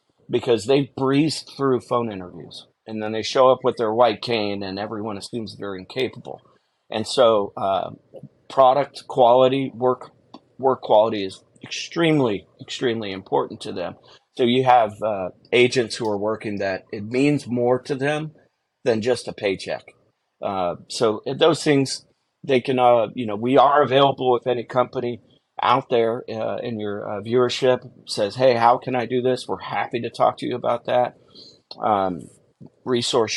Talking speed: 165 wpm